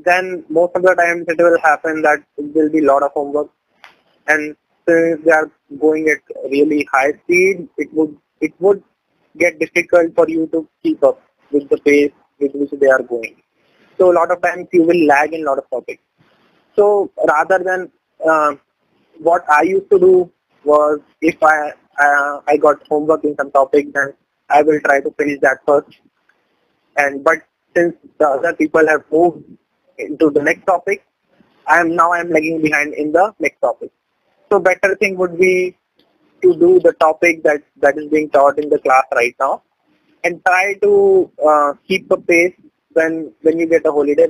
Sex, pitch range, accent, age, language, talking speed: male, 150-180 Hz, native, 20-39, Hindi, 185 wpm